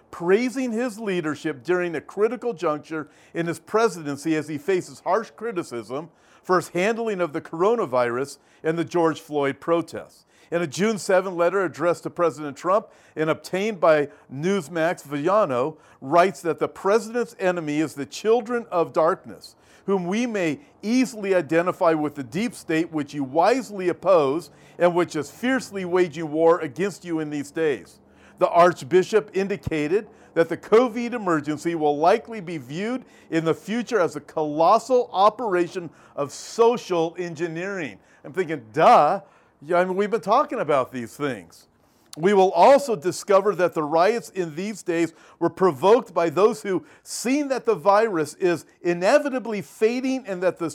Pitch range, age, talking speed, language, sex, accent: 160-215 Hz, 50-69, 155 wpm, English, male, American